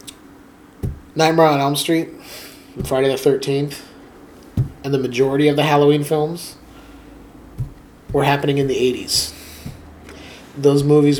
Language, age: English, 30-49